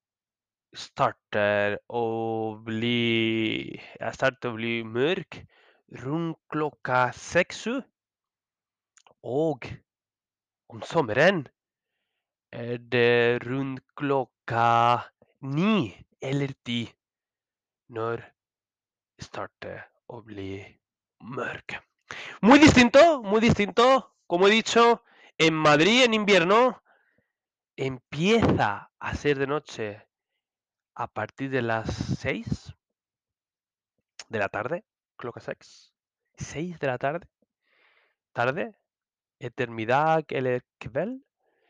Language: Spanish